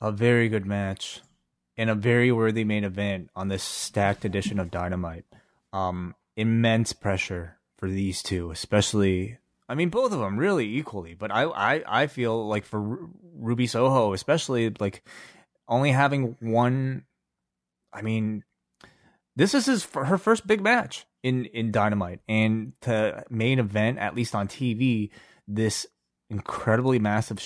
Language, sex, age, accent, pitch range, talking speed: English, male, 20-39, American, 100-120 Hz, 150 wpm